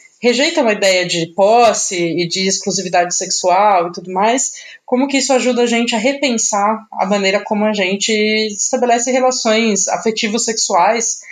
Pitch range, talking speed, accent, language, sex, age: 190-240 Hz, 150 wpm, Brazilian, Portuguese, female, 20-39